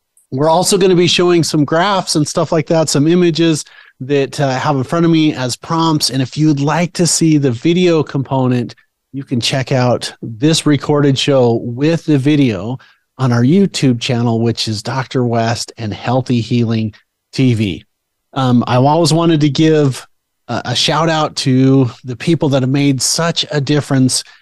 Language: English